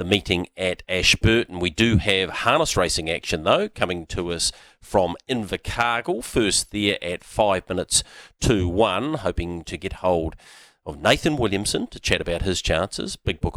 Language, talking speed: English, 165 wpm